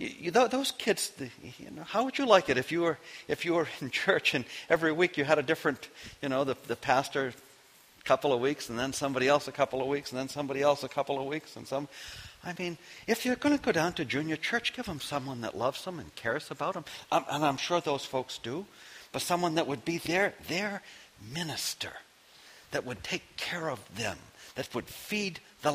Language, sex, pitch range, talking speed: English, male, 145-210 Hz, 235 wpm